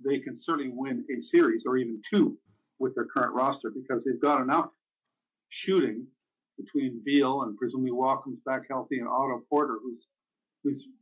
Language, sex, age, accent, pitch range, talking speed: English, male, 50-69, American, 120-145 Hz, 165 wpm